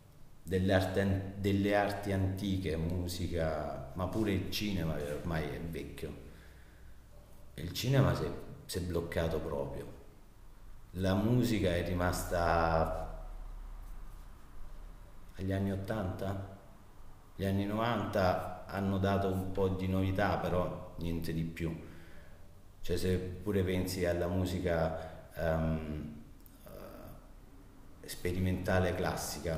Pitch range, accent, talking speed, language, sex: 80-95 Hz, native, 100 wpm, Italian, male